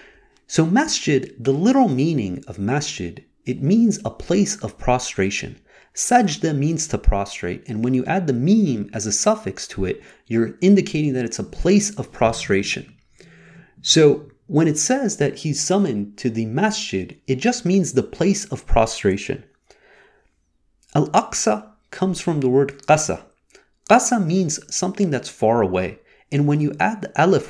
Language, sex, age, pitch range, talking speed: English, male, 30-49, 125-205 Hz, 155 wpm